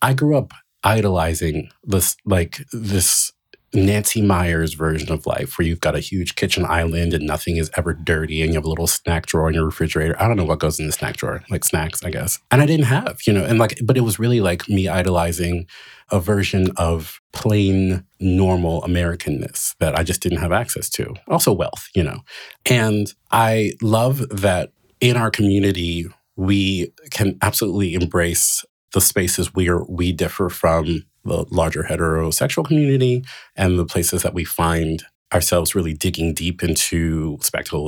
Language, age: English, 30-49